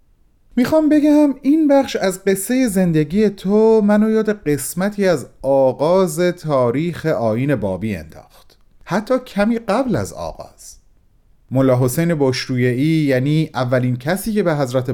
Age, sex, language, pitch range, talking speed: 40-59, male, Persian, 120-195 Hz, 120 wpm